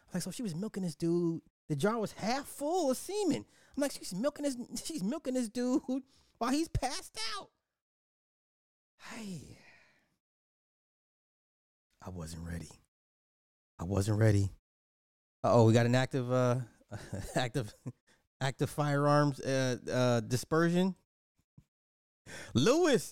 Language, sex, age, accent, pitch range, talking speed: English, male, 30-49, American, 110-170 Hz, 125 wpm